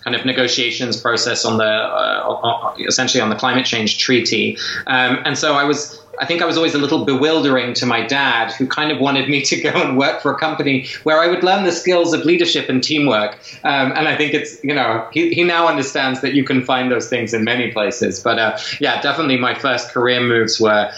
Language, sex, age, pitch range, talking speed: English, male, 20-39, 125-150 Hz, 230 wpm